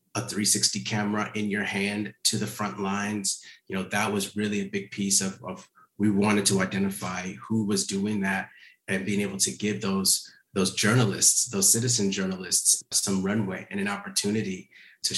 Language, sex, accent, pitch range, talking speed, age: English, male, American, 95-110 Hz, 180 wpm, 30-49